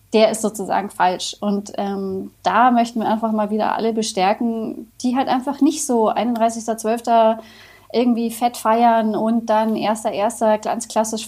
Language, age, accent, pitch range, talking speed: German, 30-49, German, 215-245 Hz, 150 wpm